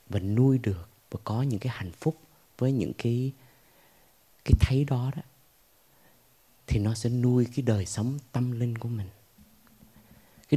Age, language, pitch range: 20-39, Vietnamese, 100-125 Hz